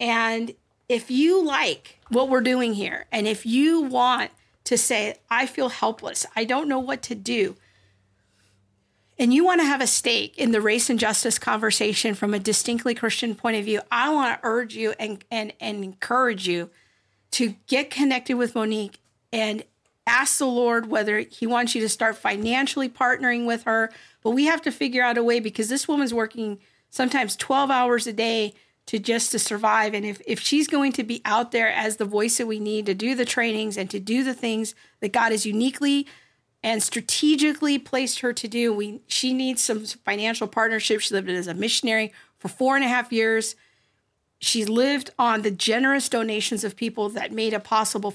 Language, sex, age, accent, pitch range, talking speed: English, female, 40-59, American, 215-250 Hz, 195 wpm